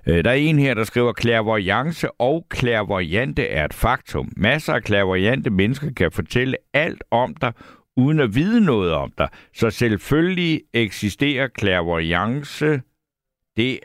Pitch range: 95-130 Hz